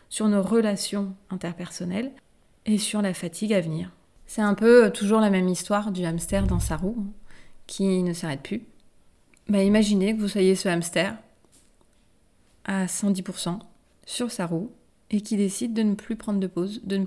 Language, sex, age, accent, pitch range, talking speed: French, female, 30-49, French, 185-220 Hz, 170 wpm